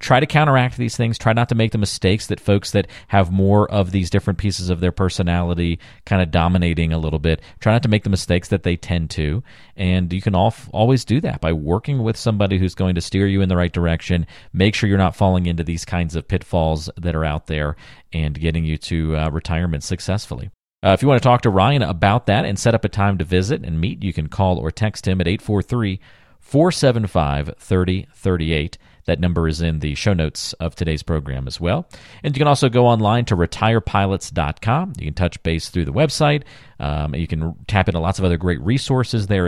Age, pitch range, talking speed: 40-59, 85-105 Hz, 220 wpm